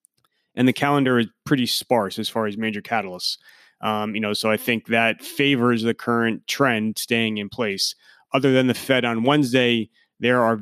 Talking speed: 185 wpm